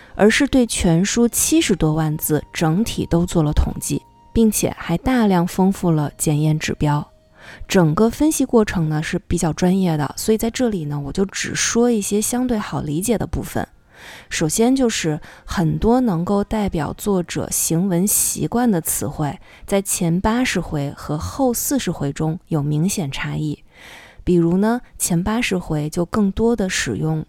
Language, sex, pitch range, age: Chinese, female, 160-225 Hz, 20-39